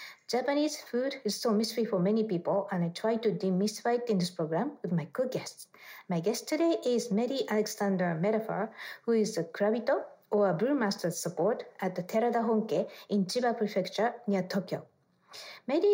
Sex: female